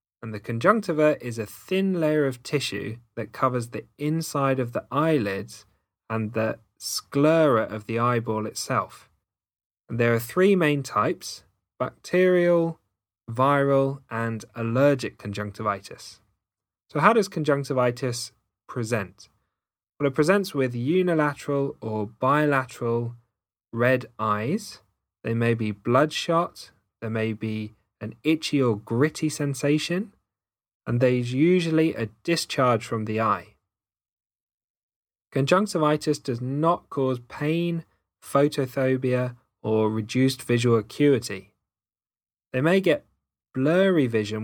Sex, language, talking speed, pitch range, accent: male, English, 110 wpm, 110-145 Hz, British